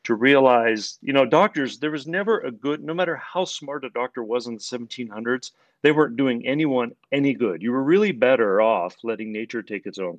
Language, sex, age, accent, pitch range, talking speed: English, male, 40-59, American, 115-150 Hz, 210 wpm